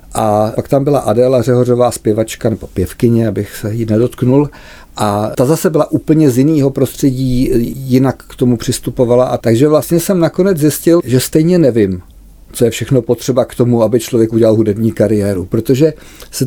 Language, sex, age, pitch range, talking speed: Czech, male, 50-69, 110-135 Hz, 170 wpm